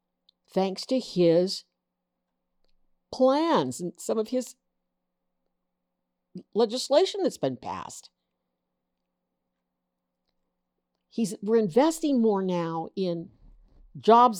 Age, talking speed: 60-79, 75 wpm